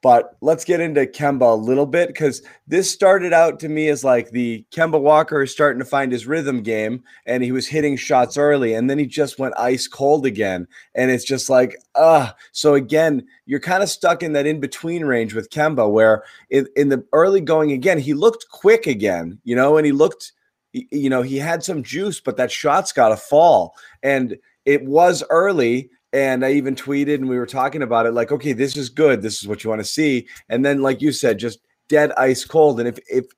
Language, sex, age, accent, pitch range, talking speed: English, male, 30-49, American, 125-155 Hz, 225 wpm